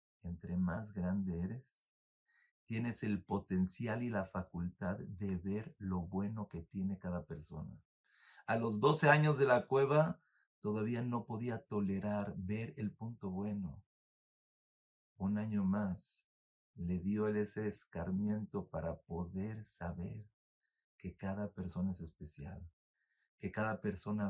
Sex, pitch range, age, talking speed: male, 90-115 Hz, 50-69, 130 wpm